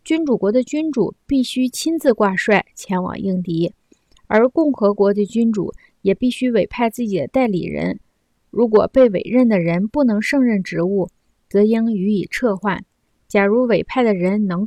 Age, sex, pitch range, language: 20-39, female, 195-245 Hz, Chinese